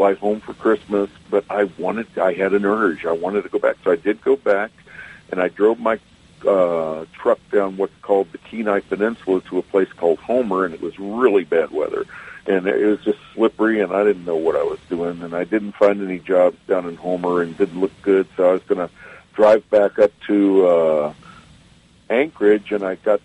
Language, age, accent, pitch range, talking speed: English, 60-79, American, 90-120 Hz, 215 wpm